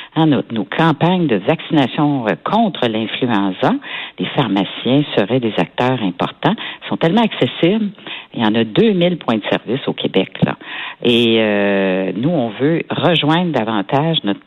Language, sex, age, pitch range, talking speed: French, female, 50-69, 100-150 Hz, 150 wpm